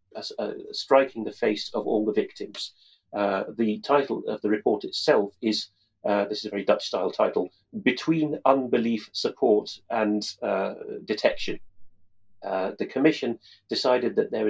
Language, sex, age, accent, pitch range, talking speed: English, male, 40-59, British, 105-130 Hz, 150 wpm